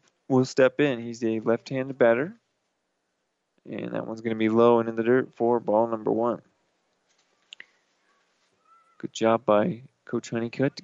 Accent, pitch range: American, 110-130 Hz